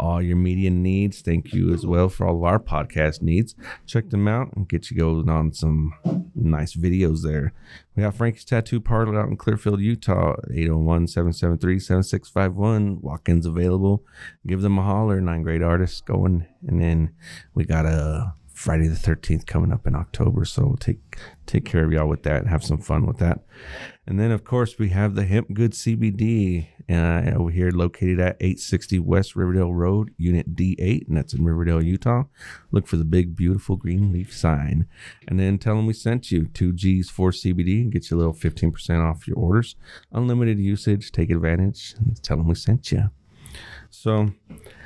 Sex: male